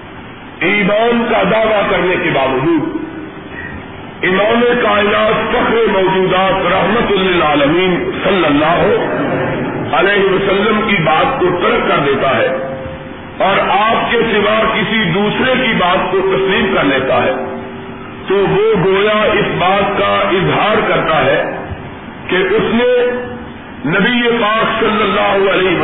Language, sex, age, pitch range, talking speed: Urdu, male, 50-69, 195-240 Hz, 125 wpm